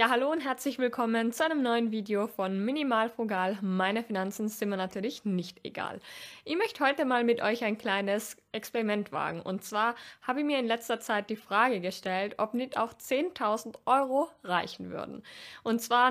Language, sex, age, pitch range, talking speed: German, female, 20-39, 210-255 Hz, 185 wpm